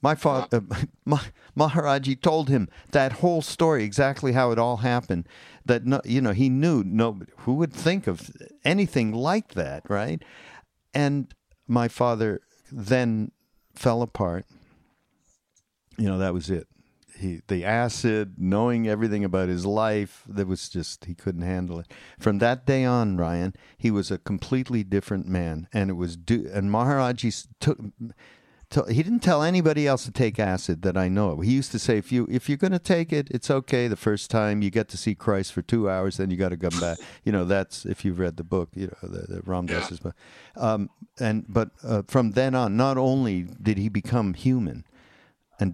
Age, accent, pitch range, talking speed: 50-69, American, 95-125 Hz, 190 wpm